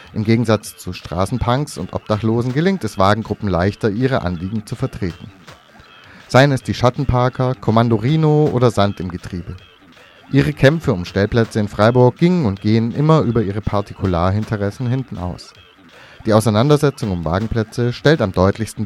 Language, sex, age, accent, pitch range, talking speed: German, male, 30-49, German, 100-130 Hz, 145 wpm